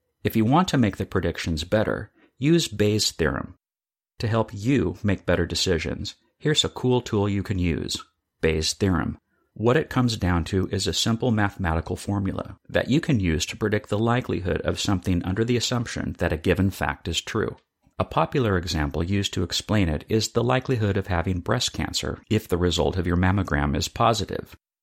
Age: 50-69